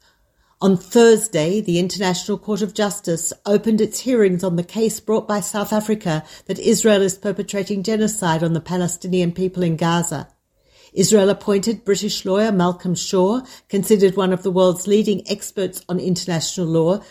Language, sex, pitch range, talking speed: Hebrew, female, 170-205 Hz, 155 wpm